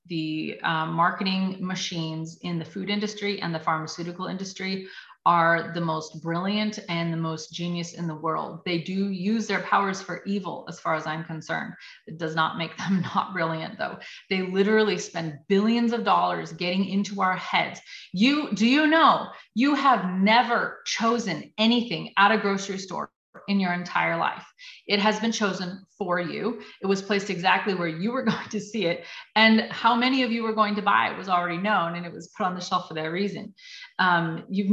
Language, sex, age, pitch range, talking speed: English, female, 30-49, 170-210 Hz, 195 wpm